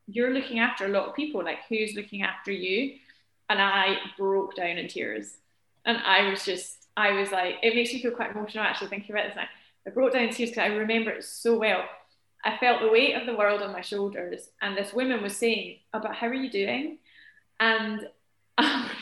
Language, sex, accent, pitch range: English, female, British, 195-225 Hz